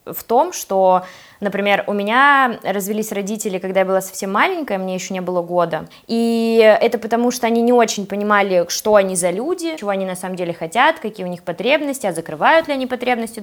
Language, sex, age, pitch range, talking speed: Russian, female, 20-39, 190-235 Hz, 200 wpm